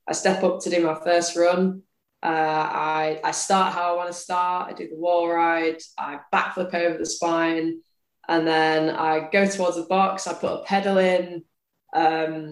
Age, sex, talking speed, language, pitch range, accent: 10-29, female, 190 wpm, English, 160-180 Hz, British